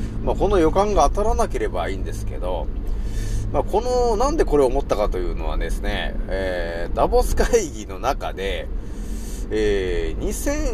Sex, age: male, 30-49